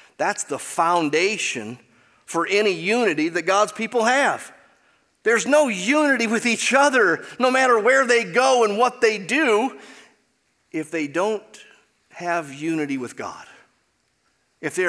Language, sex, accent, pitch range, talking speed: English, male, American, 150-245 Hz, 135 wpm